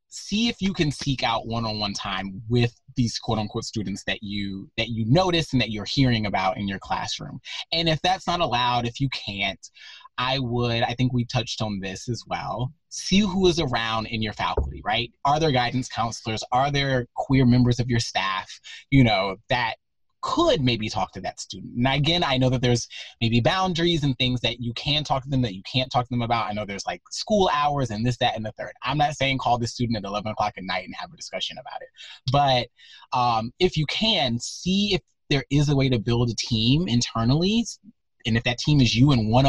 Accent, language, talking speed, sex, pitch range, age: American, English, 225 wpm, male, 115-145 Hz, 30-49